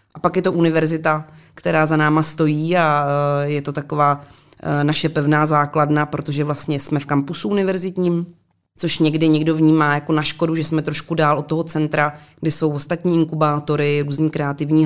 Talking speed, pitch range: 170 wpm, 145-160 Hz